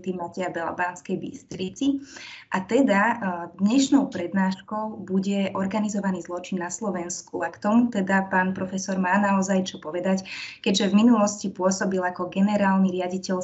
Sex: female